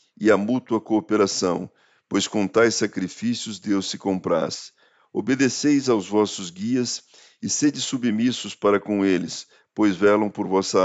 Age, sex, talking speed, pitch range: 50-69, male, 140 wpm, 95-115 Hz